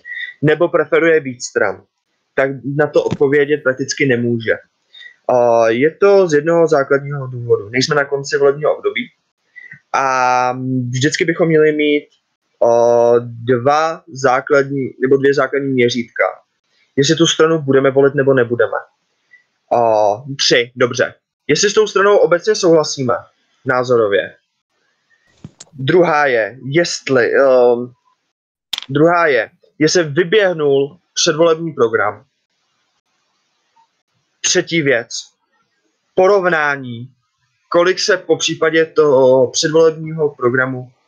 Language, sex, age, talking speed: Czech, male, 20-39, 100 wpm